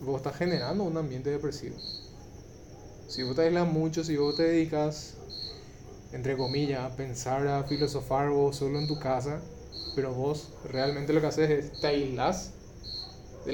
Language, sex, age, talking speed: Spanish, male, 20-39, 160 wpm